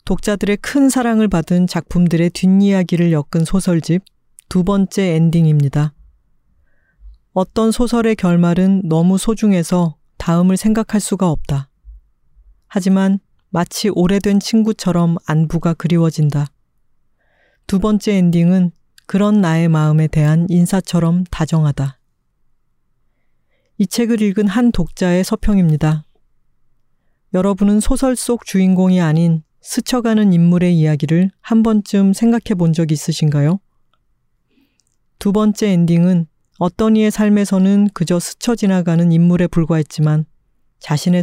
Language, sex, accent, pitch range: Korean, female, native, 165-205 Hz